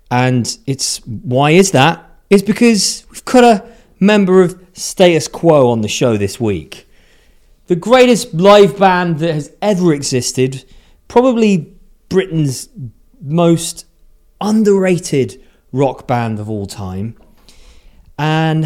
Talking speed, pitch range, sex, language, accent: 120 wpm, 110-170 Hz, male, English, British